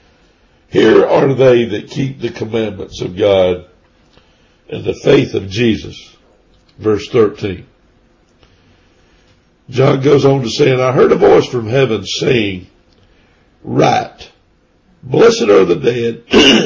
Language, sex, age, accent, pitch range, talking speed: English, male, 60-79, American, 100-135 Hz, 125 wpm